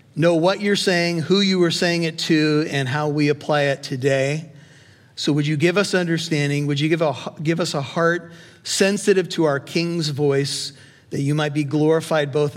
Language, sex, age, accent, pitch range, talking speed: English, male, 50-69, American, 140-175 Hz, 190 wpm